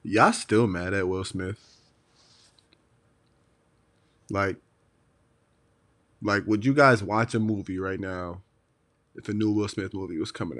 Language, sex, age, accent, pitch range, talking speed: English, male, 30-49, American, 100-115 Hz, 135 wpm